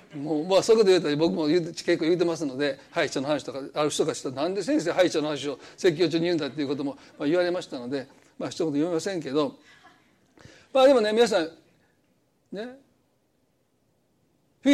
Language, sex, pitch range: Japanese, male, 165-265 Hz